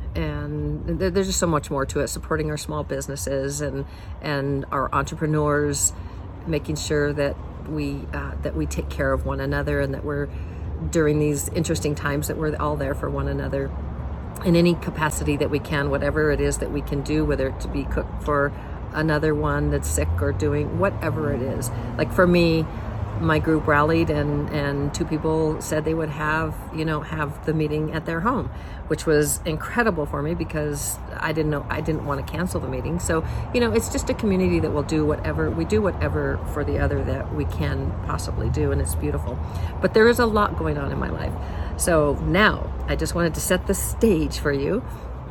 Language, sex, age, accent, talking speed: English, female, 50-69, American, 205 wpm